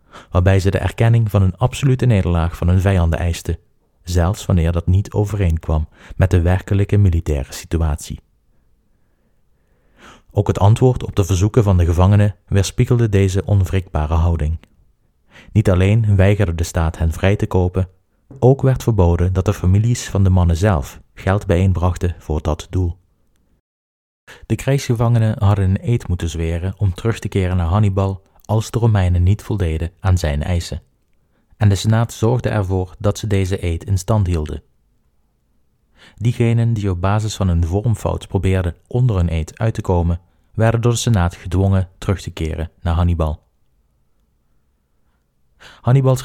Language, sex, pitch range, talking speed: Dutch, male, 85-105 Hz, 150 wpm